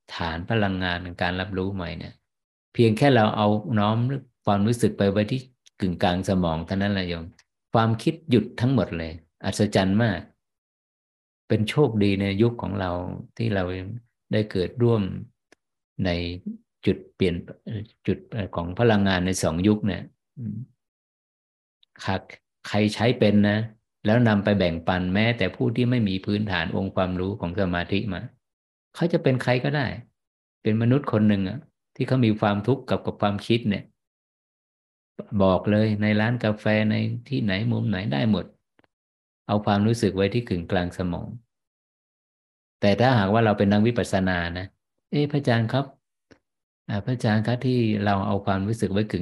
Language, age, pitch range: Thai, 50-69, 95-115 Hz